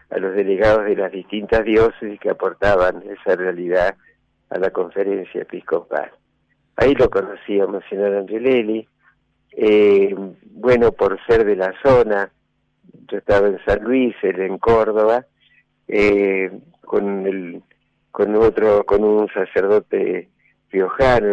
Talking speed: 125 wpm